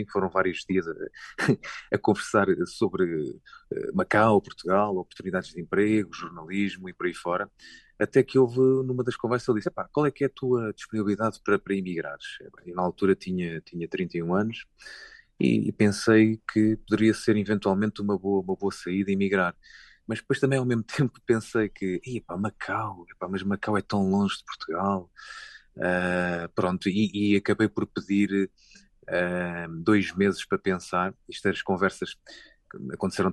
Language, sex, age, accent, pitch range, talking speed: Portuguese, male, 30-49, Portuguese, 90-110 Hz, 160 wpm